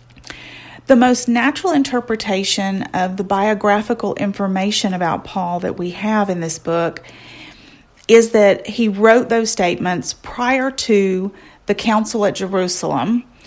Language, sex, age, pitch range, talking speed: English, female, 40-59, 180-215 Hz, 125 wpm